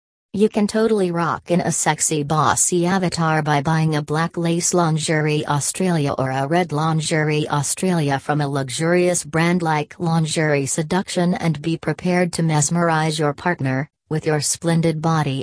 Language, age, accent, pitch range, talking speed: English, 40-59, American, 145-175 Hz, 150 wpm